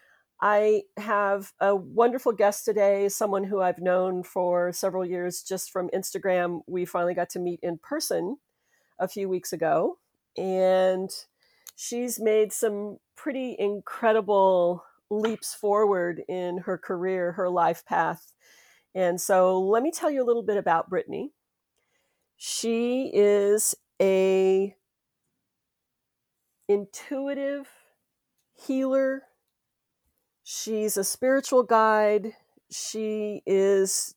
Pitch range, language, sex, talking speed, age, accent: 180-210 Hz, English, female, 110 wpm, 50-69, American